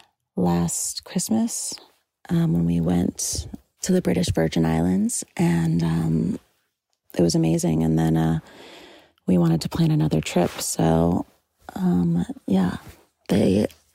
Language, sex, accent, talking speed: English, female, American, 125 wpm